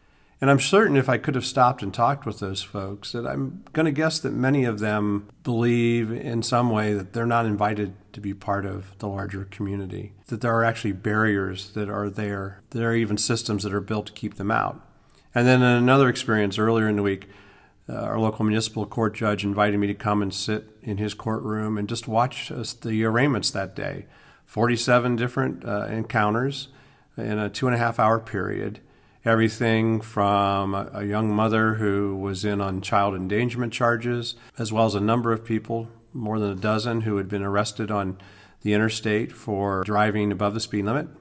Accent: American